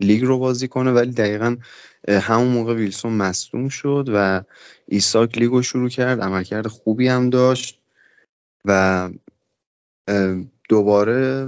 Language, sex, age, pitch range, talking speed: Persian, male, 20-39, 100-120 Hz, 115 wpm